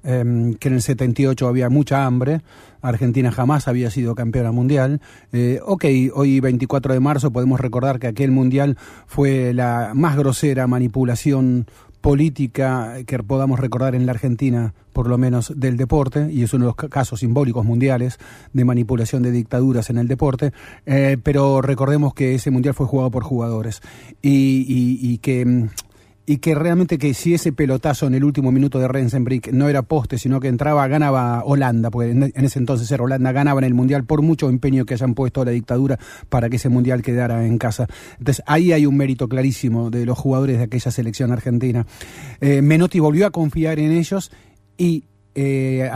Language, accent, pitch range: Spanish, Argentinian, 125-140 Hz